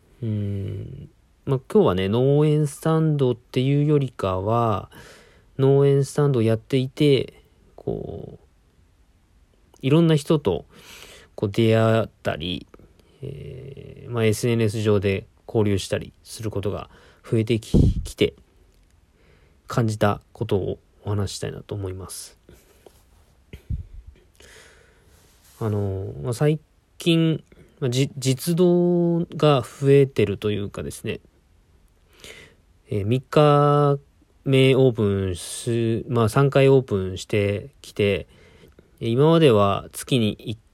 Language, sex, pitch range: Japanese, male, 95-135 Hz